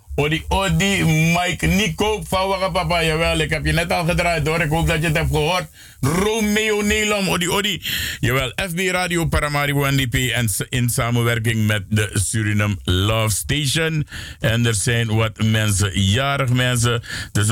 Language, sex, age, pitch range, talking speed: Dutch, male, 50-69, 105-155 Hz, 160 wpm